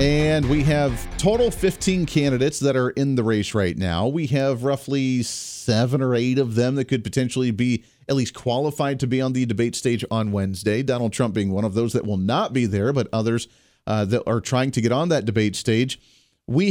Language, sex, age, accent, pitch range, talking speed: English, male, 40-59, American, 120-155 Hz, 215 wpm